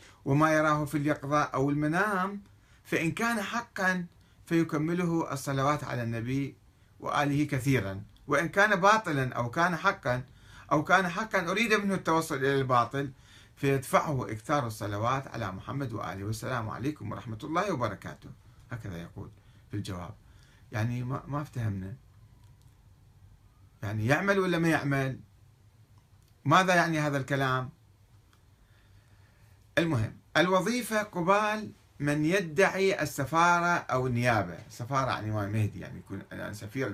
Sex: male